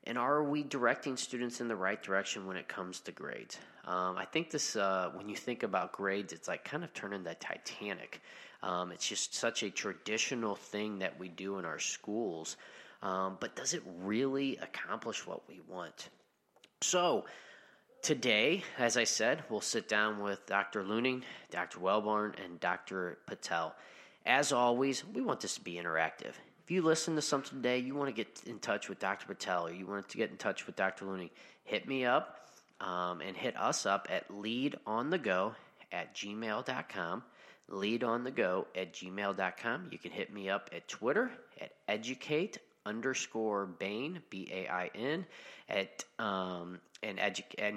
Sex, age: male, 20-39